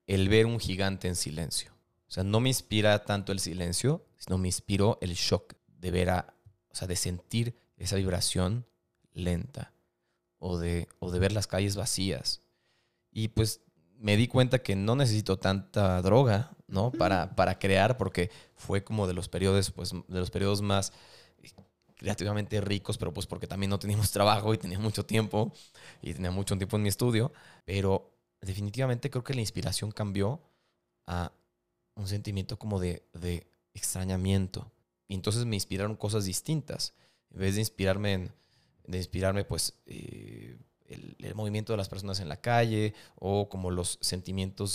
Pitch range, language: 90-110 Hz, Spanish